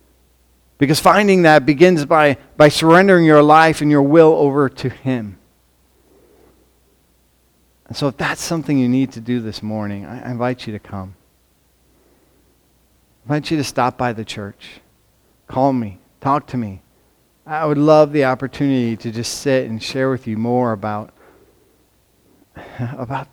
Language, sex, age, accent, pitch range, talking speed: English, male, 40-59, American, 100-130 Hz, 155 wpm